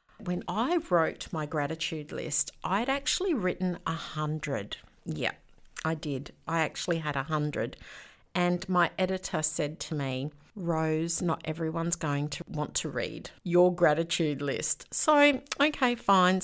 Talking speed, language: 140 wpm, English